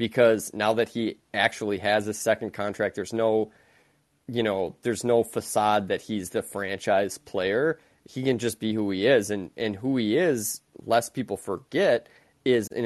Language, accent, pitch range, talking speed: English, American, 105-120 Hz, 175 wpm